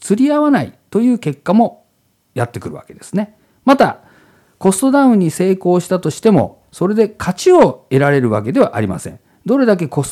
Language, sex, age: Japanese, male, 50-69